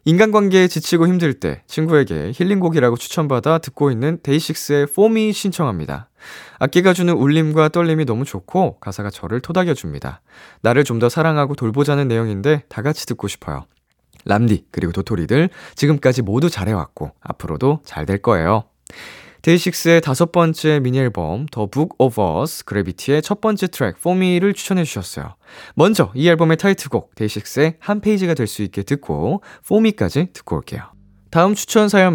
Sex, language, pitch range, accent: male, Korean, 110-170 Hz, native